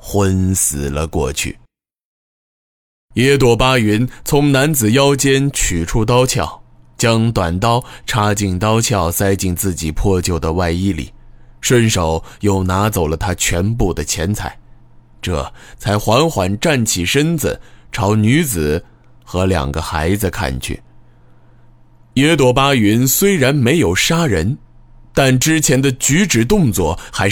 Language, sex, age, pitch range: Chinese, male, 20-39, 90-135 Hz